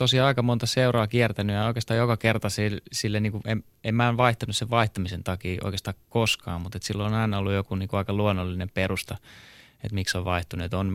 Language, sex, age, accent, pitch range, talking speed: Finnish, male, 20-39, native, 95-115 Hz, 220 wpm